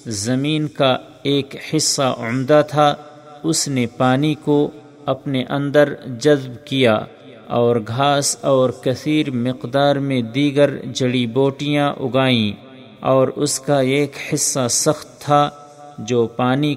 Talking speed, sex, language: 120 wpm, male, Urdu